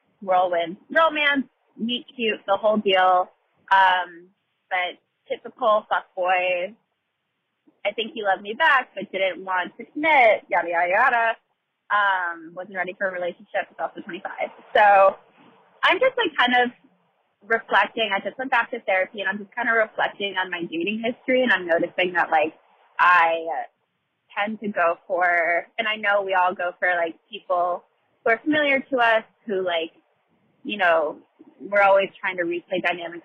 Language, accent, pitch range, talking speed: English, American, 180-240 Hz, 165 wpm